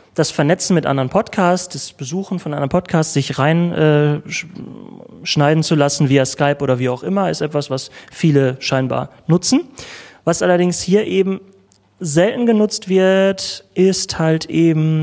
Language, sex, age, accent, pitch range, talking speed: German, male, 30-49, German, 135-180 Hz, 150 wpm